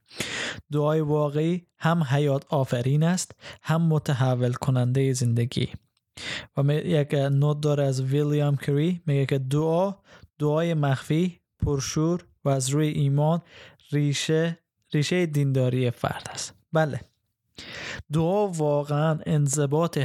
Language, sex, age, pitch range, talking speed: Persian, male, 20-39, 130-160 Hz, 110 wpm